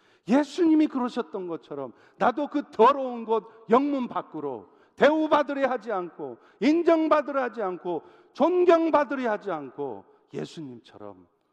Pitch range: 180-235 Hz